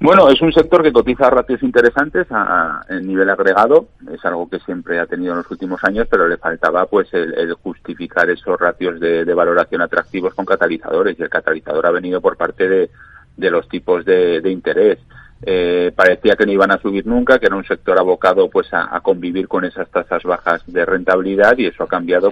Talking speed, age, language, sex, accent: 210 wpm, 40-59, Spanish, male, Spanish